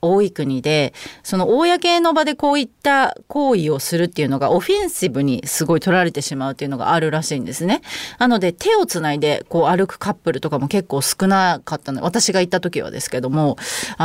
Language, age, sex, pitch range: Japanese, 30-49, female, 155-230 Hz